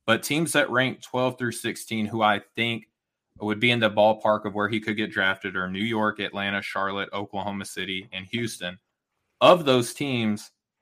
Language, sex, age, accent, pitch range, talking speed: English, male, 20-39, American, 100-110 Hz, 185 wpm